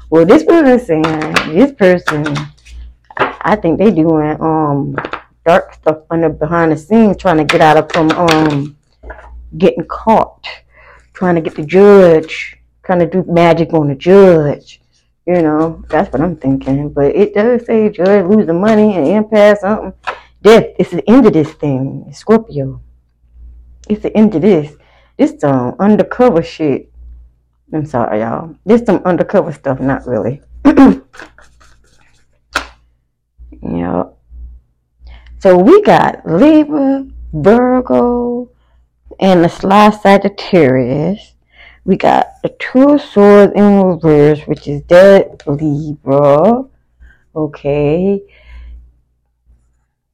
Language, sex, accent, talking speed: English, female, American, 130 wpm